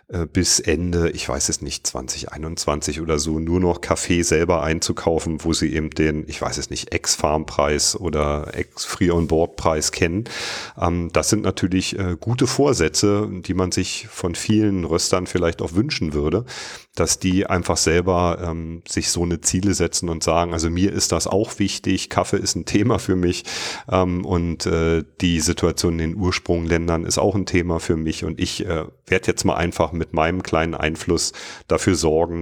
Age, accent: 40-59, German